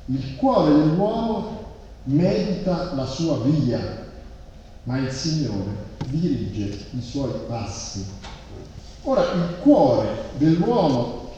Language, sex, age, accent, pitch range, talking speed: Italian, male, 50-69, native, 110-165 Hz, 95 wpm